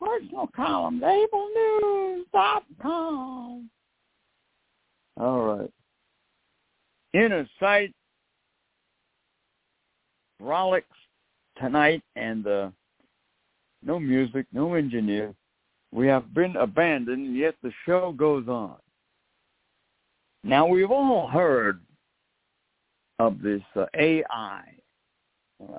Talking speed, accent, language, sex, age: 85 wpm, American, English, male, 60-79